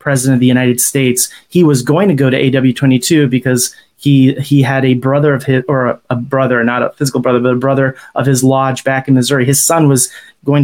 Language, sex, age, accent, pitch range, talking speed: English, male, 30-49, American, 130-150 Hz, 230 wpm